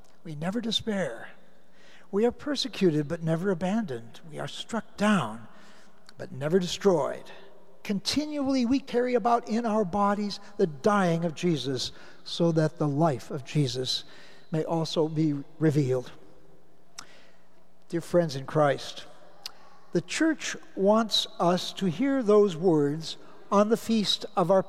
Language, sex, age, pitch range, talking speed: English, male, 60-79, 170-220 Hz, 130 wpm